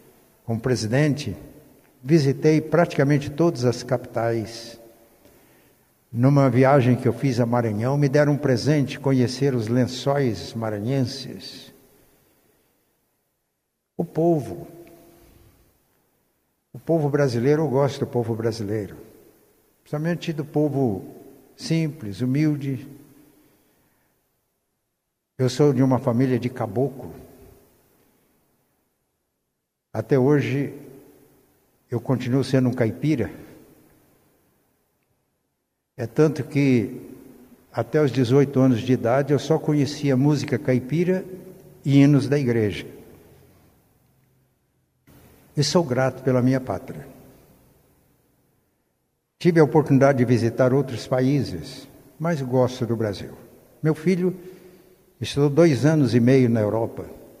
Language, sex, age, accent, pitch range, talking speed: Portuguese, male, 60-79, Brazilian, 120-145 Hz, 100 wpm